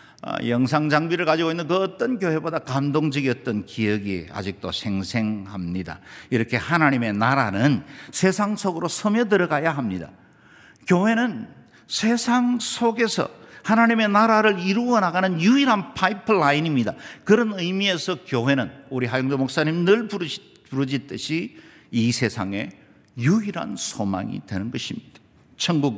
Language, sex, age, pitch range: Korean, male, 50-69, 130-190 Hz